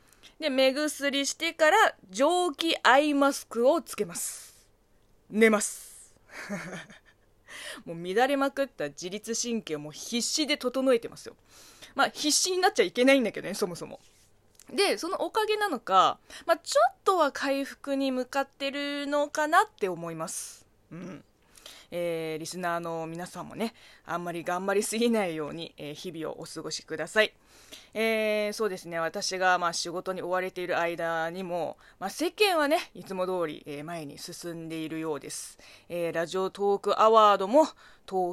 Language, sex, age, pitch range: Japanese, female, 20-39, 170-270 Hz